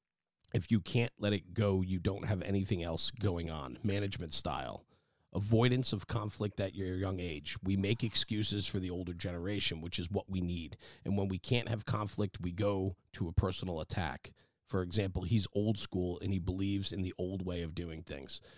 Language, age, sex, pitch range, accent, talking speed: English, 40-59, male, 90-110 Hz, American, 195 wpm